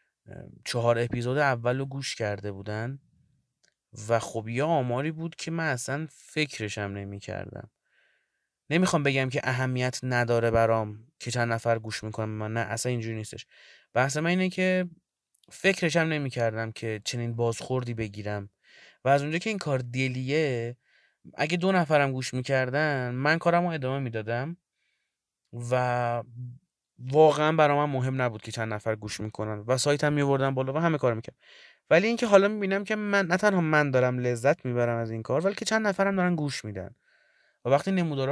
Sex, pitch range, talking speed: male, 115-145 Hz, 170 wpm